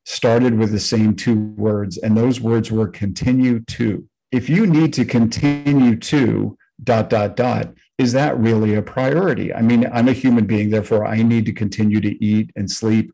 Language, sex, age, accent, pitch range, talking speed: English, male, 50-69, American, 110-130 Hz, 185 wpm